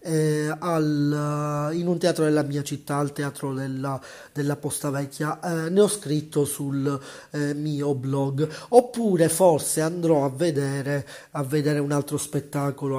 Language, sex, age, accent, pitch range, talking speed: Italian, male, 30-49, native, 140-160 Hz, 150 wpm